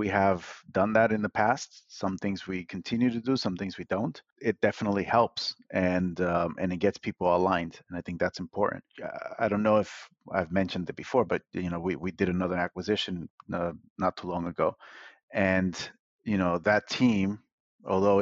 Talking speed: 195 wpm